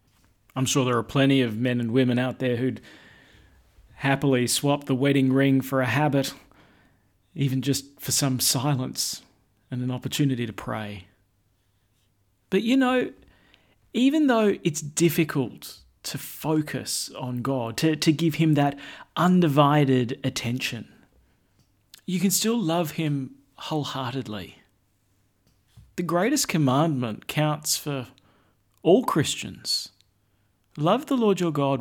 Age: 40-59